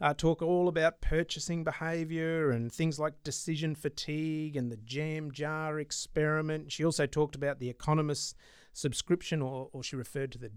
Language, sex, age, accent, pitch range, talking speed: English, male, 30-49, Australian, 145-170 Hz, 165 wpm